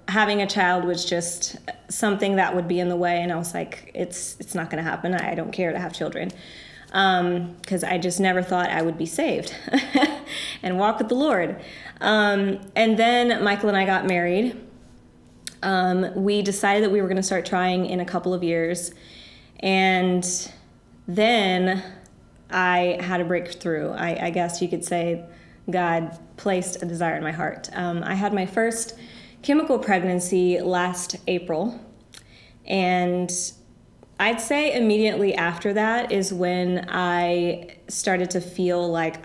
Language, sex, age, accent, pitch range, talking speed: English, female, 20-39, American, 175-200 Hz, 160 wpm